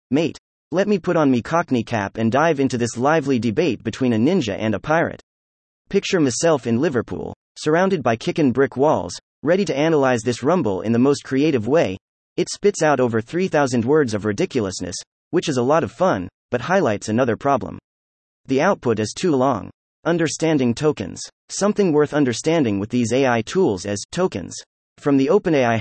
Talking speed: 175 wpm